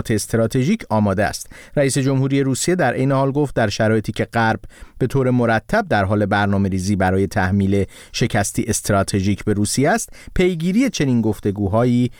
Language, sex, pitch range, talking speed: Persian, male, 100-135 Hz, 150 wpm